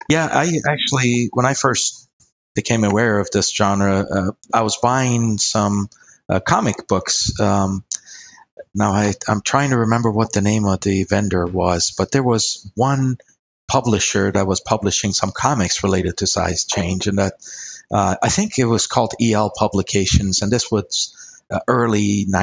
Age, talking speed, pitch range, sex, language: 40-59, 165 wpm, 95-115 Hz, male, English